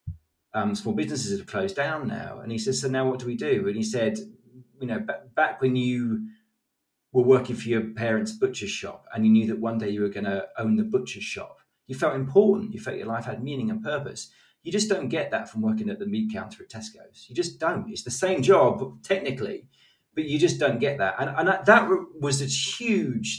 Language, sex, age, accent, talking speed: English, male, 40-59, British, 230 wpm